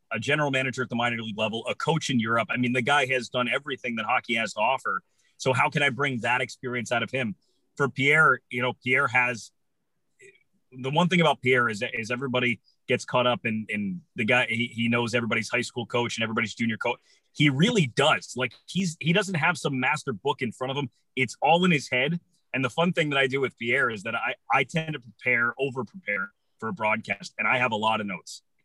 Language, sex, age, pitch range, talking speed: English, male, 30-49, 115-145 Hz, 240 wpm